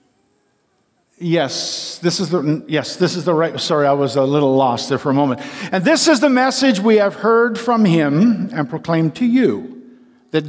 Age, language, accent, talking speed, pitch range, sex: 50-69, English, American, 195 wpm, 175-245 Hz, male